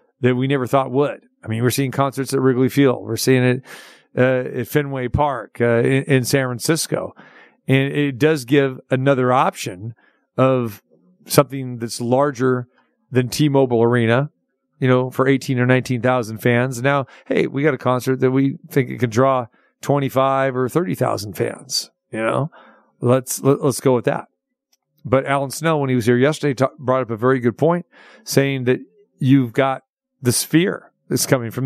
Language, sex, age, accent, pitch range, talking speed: English, male, 50-69, American, 125-145 Hz, 175 wpm